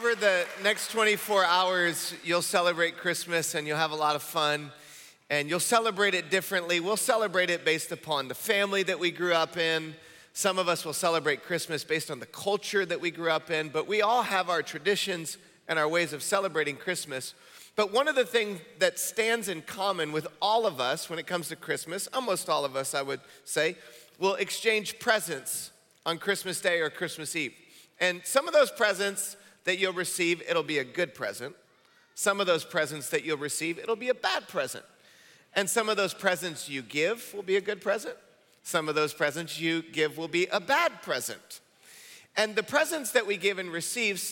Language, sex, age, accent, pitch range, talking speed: English, male, 40-59, American, 160-200 Hz, 200 wpm